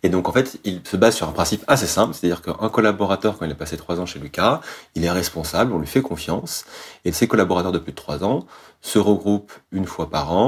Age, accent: 30-49, French